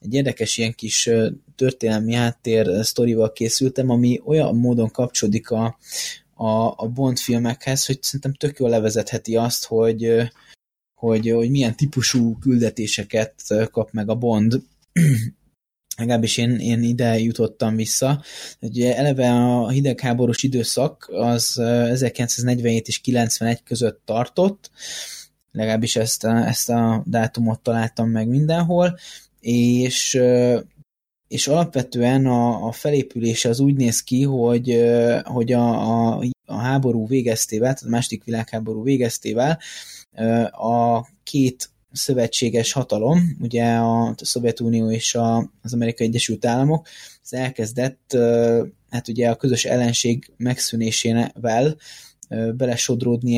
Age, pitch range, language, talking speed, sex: 20-39, 115-130 Hz, Hungarian, 115 wpm, male